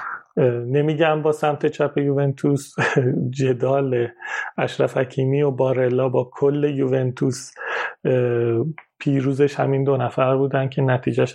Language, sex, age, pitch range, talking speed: Persian, male, 30-49, 130-150 Hz, 105 wpm